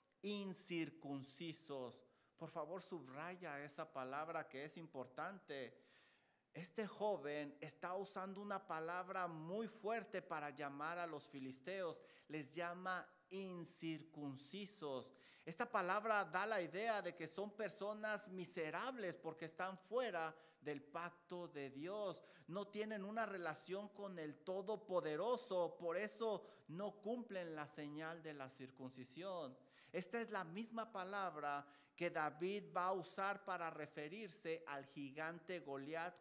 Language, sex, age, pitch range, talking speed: English, male, 50-69, 150-200 Hz, 120 wpm